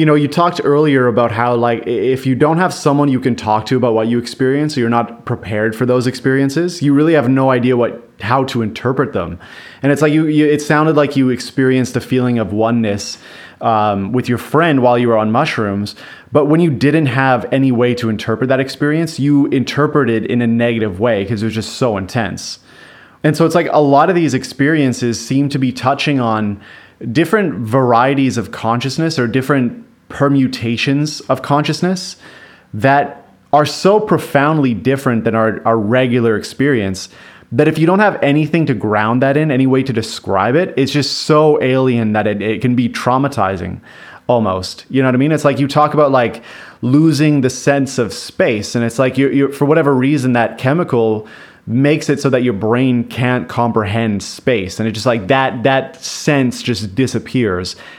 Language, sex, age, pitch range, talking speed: English, male, 30-49, 115-145 Hz, 195 wpm